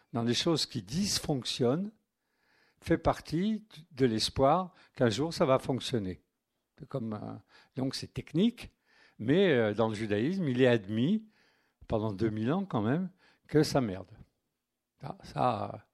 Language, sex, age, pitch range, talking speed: French, male, 50-69, 115-175 Hz, 135 wpm